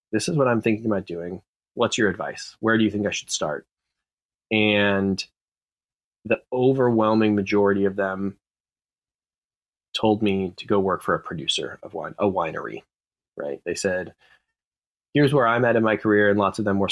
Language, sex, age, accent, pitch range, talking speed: English, male, 20-39, American, 95-105 Hz, 175 wpm